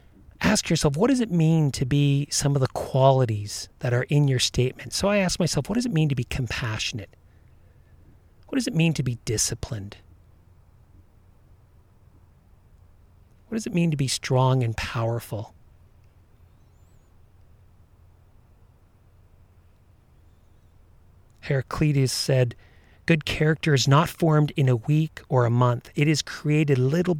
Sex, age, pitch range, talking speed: male, 40-59, 95-150 Hz, 135 wpm